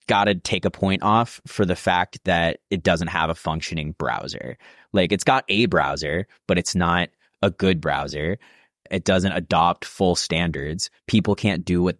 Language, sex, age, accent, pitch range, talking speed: English, male, 30-49, American, 85-110 Hz, 175 wpm